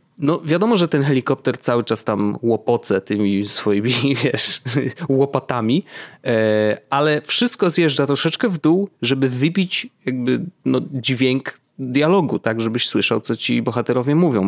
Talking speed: 135 wpm